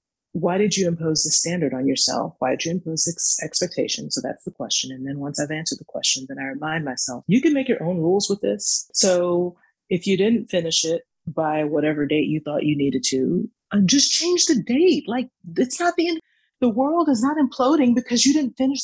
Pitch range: 155-245 Hz